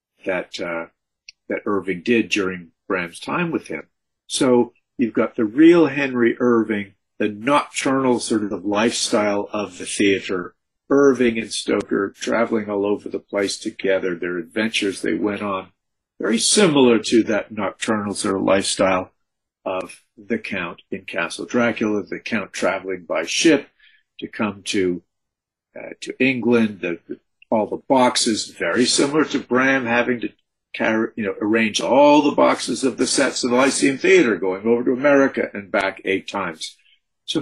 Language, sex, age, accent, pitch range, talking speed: English, male, 50-69, American, 100-135 Hz, 155 wpm